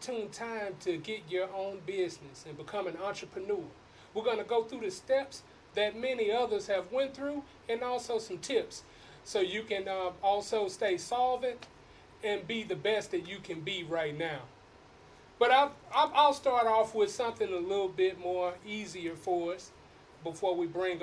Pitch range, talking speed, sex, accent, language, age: 180-235 Hz, 170 wpm, male, American, English, 30-49